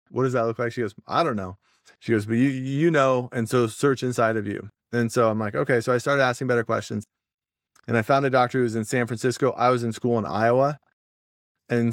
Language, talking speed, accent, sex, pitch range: English, 250 wpm, American, male, 110-125 Hz